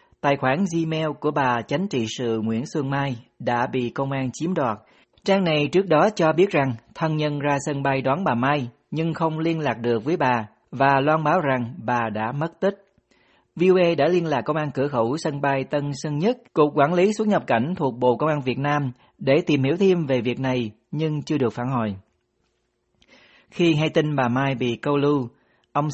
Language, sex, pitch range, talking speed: Vietnamese, male, 125-165 Hz, 215 wpm